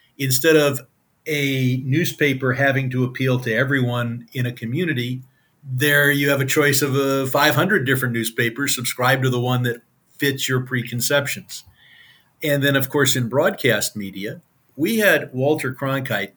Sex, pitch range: male, 120-145 Hz